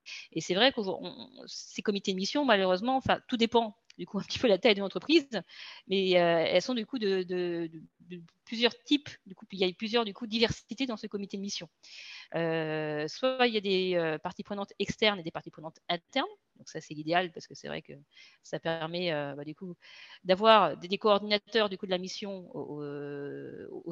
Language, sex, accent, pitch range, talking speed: French, female, French, 165-215 Hz, 220 wpm